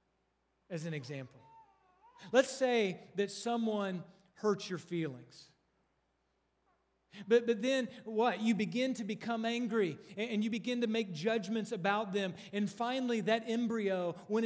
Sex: male